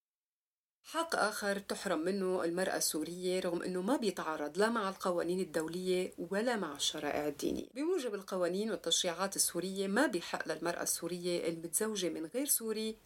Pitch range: 175-235 Hz